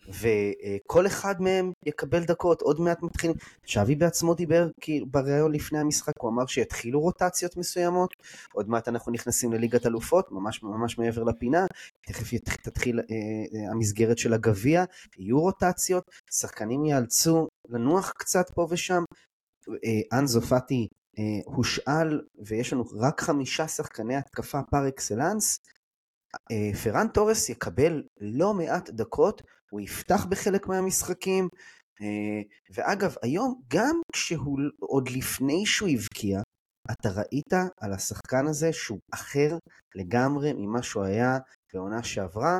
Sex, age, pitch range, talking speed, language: male, 30-49, 110-165 Hz, 130 wpm, Hebrew